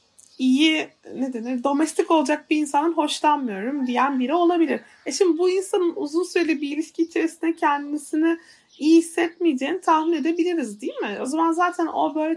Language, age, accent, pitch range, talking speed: Turkish, 30-49, native, 250-335 Hz, 155 wpm